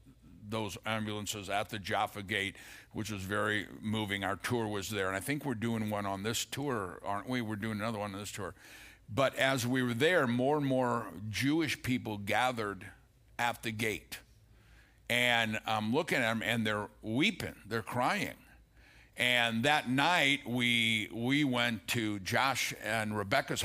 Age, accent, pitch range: 60-79, American, 110-135 Hz